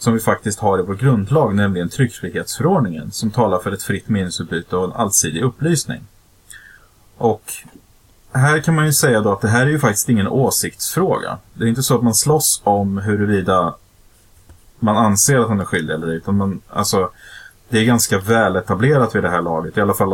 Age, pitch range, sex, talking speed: 30-49, 95-120 Hz, male, 190 wpm